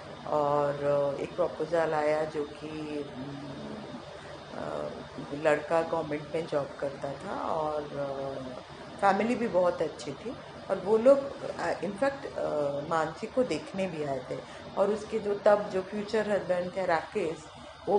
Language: Hindi